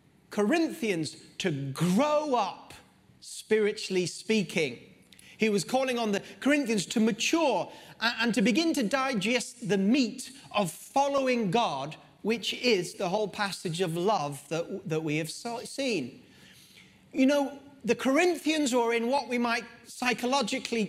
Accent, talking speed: British, 130 wpm